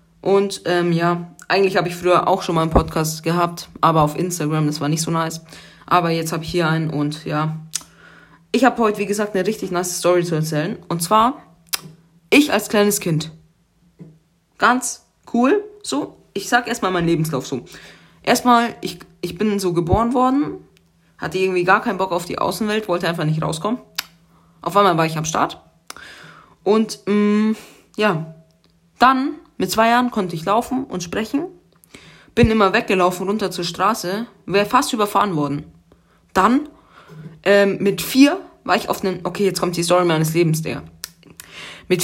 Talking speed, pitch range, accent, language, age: 170 wpm, 160-205 Hz, German, German, 20-39